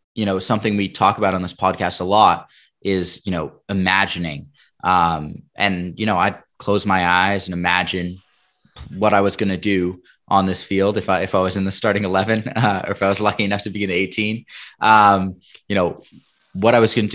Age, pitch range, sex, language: 20-39, 85-100 Hz, male, English